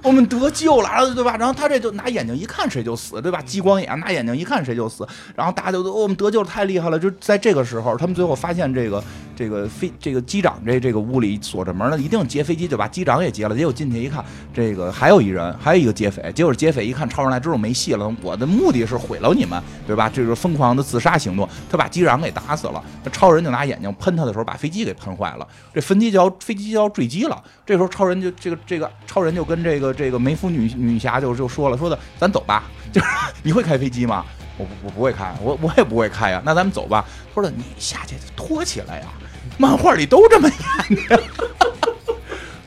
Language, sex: Chinese, male